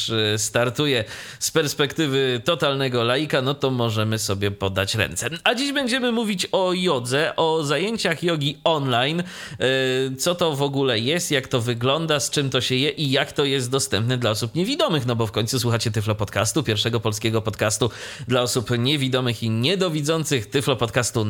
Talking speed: 165 wpm